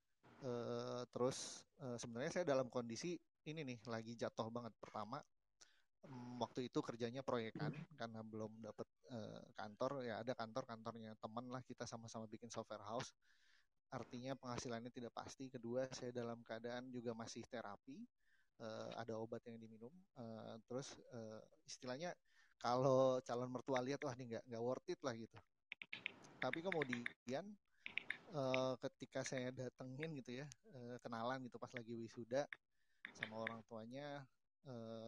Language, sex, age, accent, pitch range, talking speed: Indonesian, male, 30-49, native, 115-135 Hz, 145 wpm